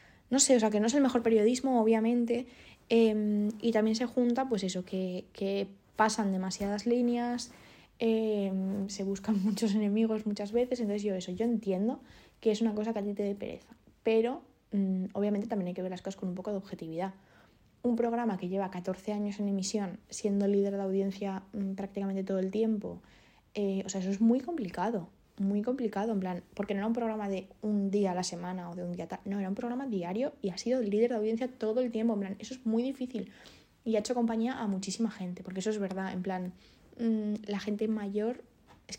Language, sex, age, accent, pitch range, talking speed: Spanish, female, 20-39, Spanish, 195-230 Hz, 220 wpm